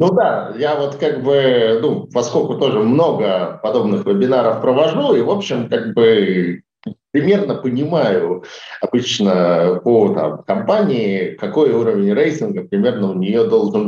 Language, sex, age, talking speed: Russian, male, 50-69, 135 wpm